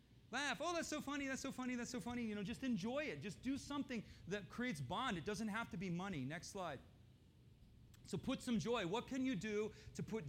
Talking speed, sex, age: 235 wpm, male, 40-59